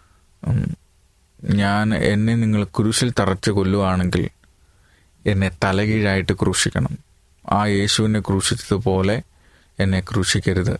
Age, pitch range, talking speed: 30-49, 95-125 Hz, 80 wpm